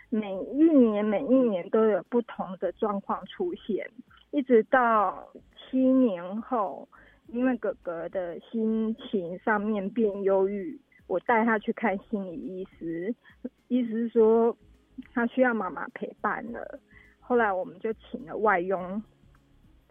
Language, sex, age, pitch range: Chinese, female, 20-39, 200-250 Hz